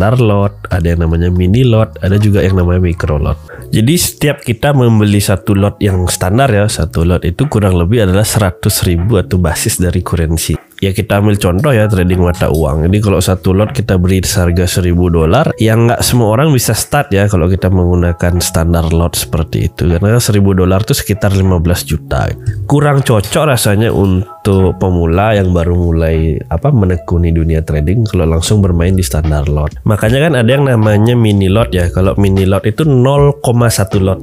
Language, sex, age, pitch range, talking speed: Indonesian, male, 20-39, 90-110 Hz, 180 wpm